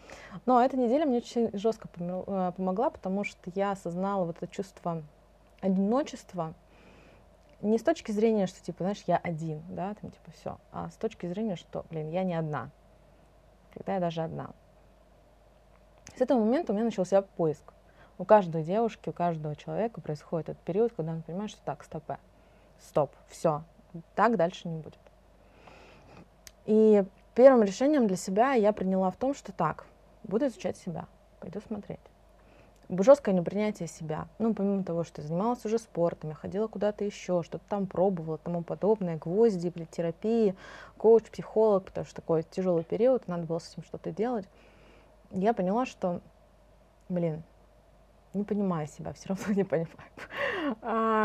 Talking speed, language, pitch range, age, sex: 155 wpm, Russian, 170-220 Hz, 20-39, female